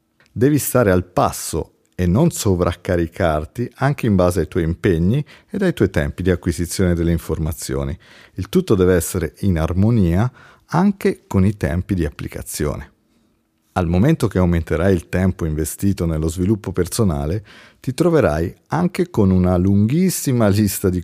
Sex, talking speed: male, 145 wpm